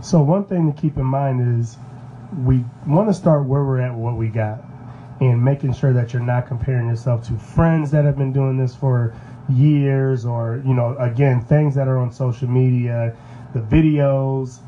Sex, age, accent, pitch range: male, 30-49, American, 120-140 Hz